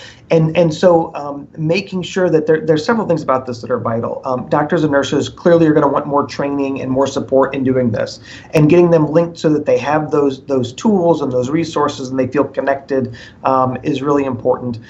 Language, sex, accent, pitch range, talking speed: English, male, American, 135-175 Hz, 220 wpm